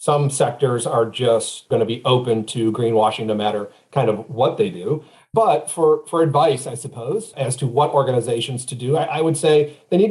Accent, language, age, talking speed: American, English, 40-59, 210 wpm